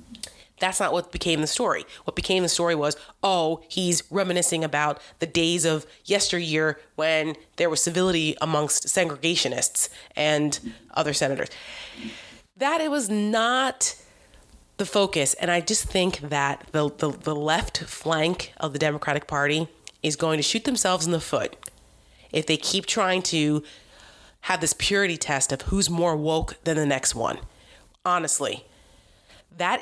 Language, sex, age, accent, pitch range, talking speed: English, female, 30-49, American, 155-195 Hz, 150 wpm